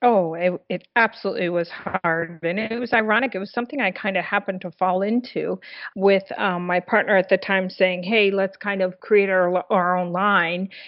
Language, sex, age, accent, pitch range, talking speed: English, female, 50-69, American, 185-225 Hz, 205 wpm